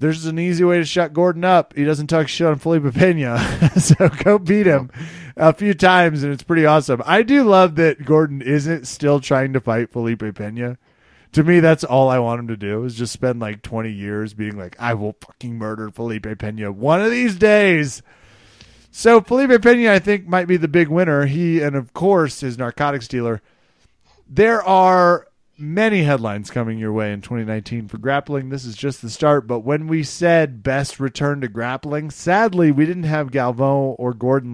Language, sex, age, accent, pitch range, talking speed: English, male, 30-49, American, 115-175 Hz, 195 wpm